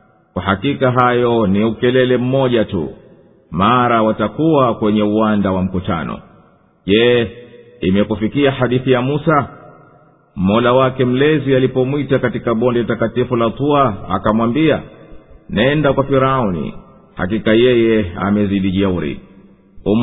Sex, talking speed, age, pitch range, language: male, 100 wpm, 50-69, 105-135 Hz, English